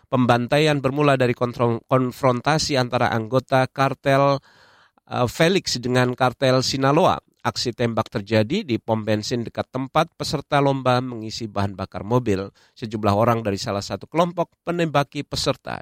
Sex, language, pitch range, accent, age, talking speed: male, Indonesian, 115-150 Hz, native, 50-69, 125 wpm